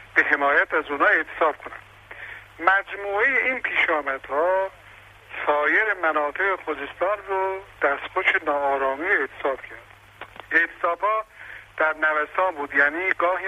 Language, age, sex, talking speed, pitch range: Persian, 60-79, male, 105 wpm, 145-190 Hz